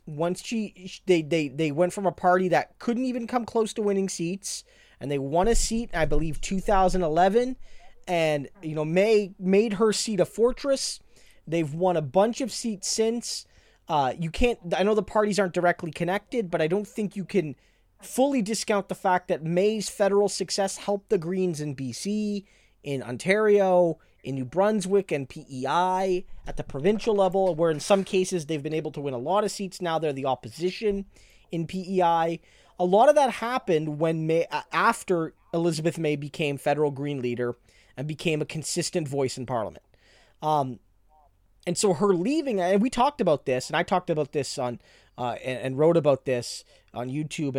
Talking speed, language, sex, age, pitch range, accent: 185 wpm, English, male, 20-39, 155-200 Hz, American